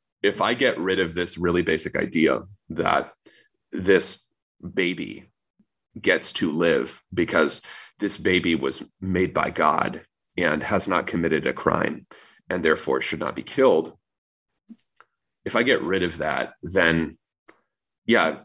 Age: 30-49